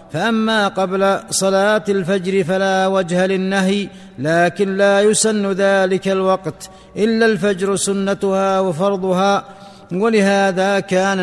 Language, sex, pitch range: Arabic, male, 190-200 Hz